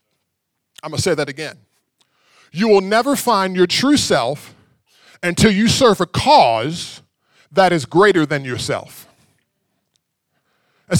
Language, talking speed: English, 130 wpm